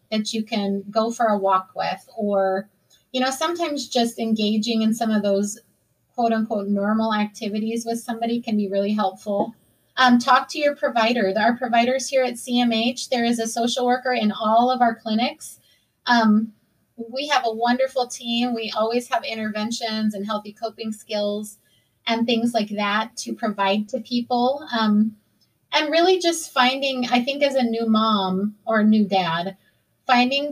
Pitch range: 215-250 Hz